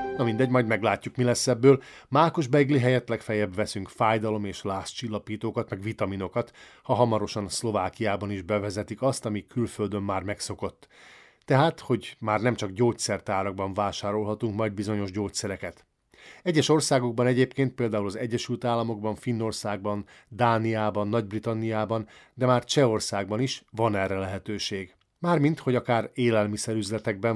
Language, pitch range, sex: Hungarian, 105-125 Hz, male